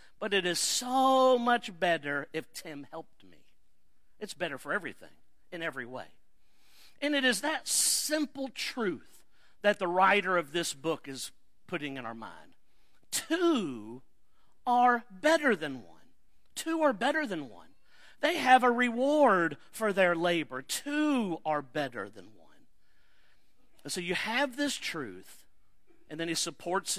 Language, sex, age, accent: English, male, 50-69, American